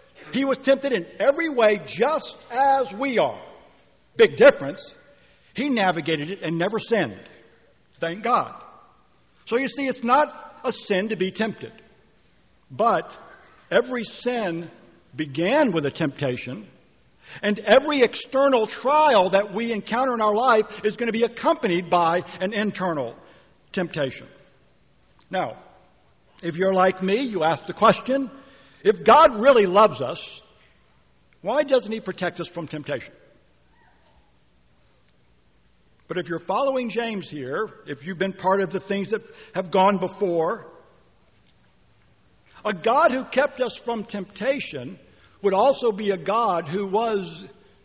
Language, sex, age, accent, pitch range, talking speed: English, male, 60-79, American, 175-250 Hz, 135 wpm